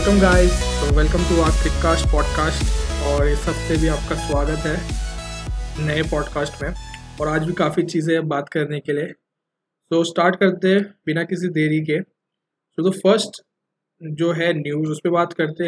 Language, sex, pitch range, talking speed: Hindi, male, 150-175 Hz, 170 wpm